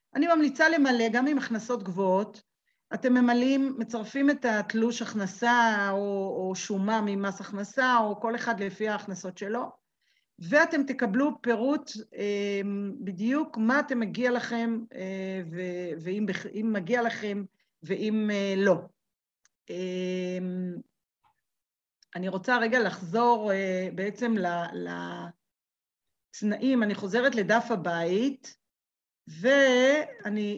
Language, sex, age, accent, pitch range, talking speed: Hebrew, female, 40-59, native, 200-245 Hz, 95 wpm